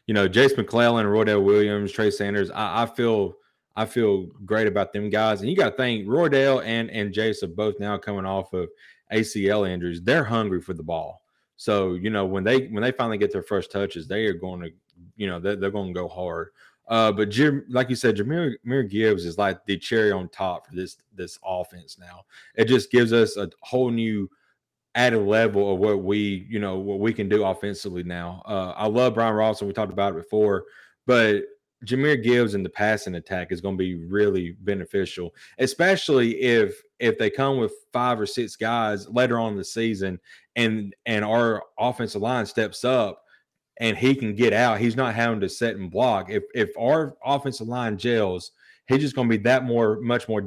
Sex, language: male, English